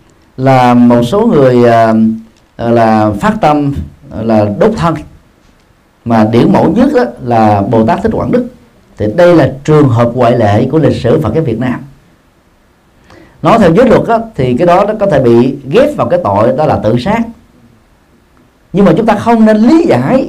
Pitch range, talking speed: 120-185 Hz, 185 wpm